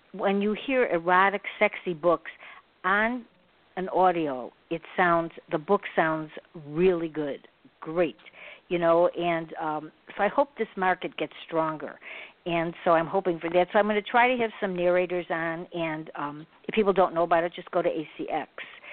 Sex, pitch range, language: female, 165-200 Hz, English